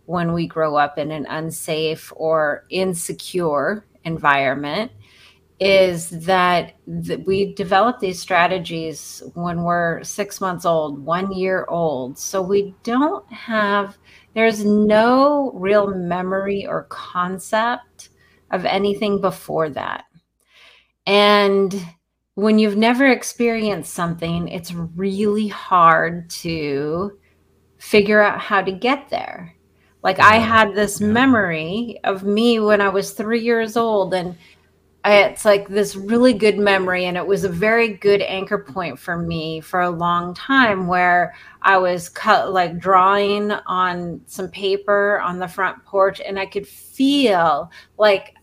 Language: English